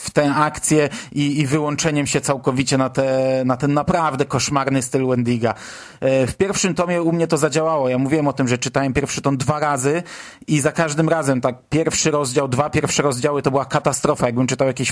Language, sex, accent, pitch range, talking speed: Polish, male, native, 145-180 Hz, 195 wpm